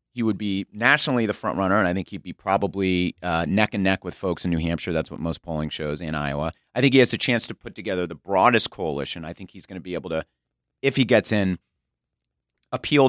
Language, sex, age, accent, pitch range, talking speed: English, male, 30-49, American, 90-115 Hz, 250 wpm